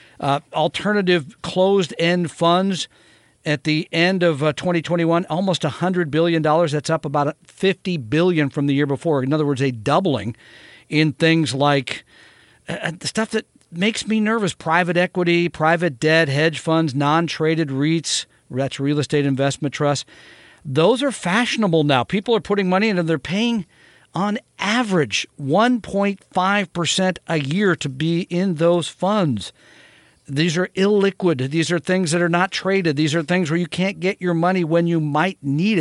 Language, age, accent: English, 50-69, American